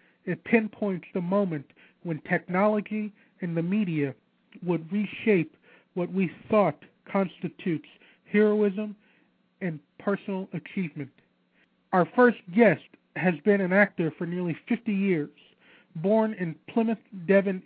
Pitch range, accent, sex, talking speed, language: 170-205 Hz, American, male, 115 wpm, English